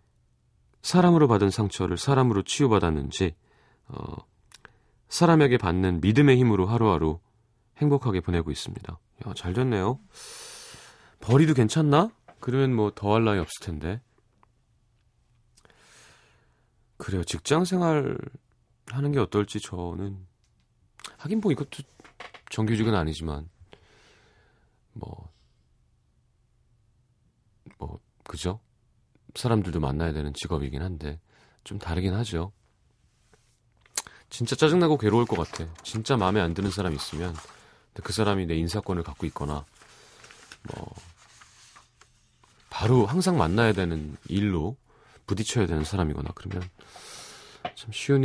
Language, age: Korean, 30-49